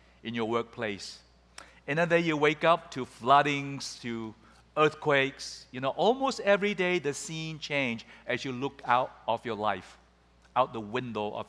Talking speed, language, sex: 160 wpm, English, male